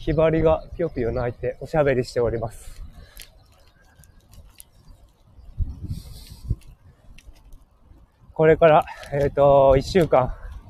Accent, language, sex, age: native, Japanese, male, 20-39